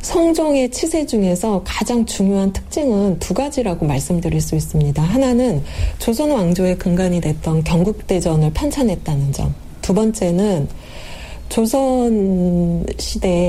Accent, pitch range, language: native, 160-220 Hz, Korean